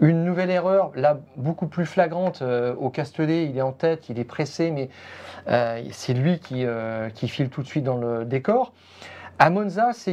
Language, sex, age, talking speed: French, male, 40-59, 200 wpm